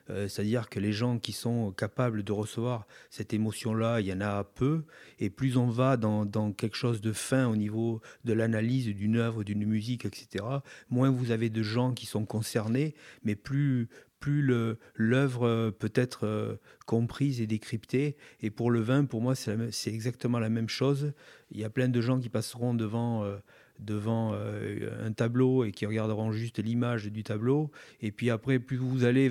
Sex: male